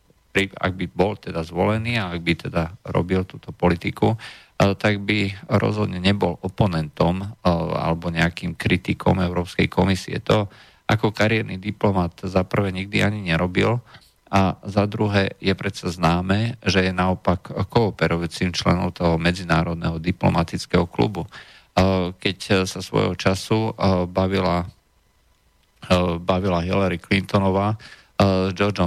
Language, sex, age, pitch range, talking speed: Slovak, male, 40-59, 85-100 Hz, 115 wpm